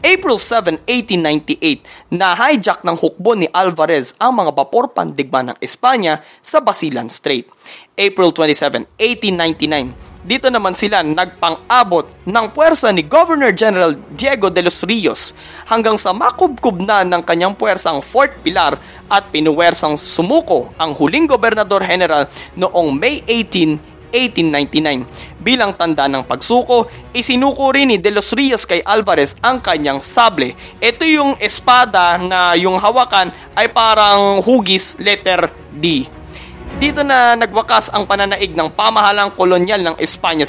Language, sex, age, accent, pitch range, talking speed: Filipino, male, 20-39, native, 170-250 Hz, 130 wpm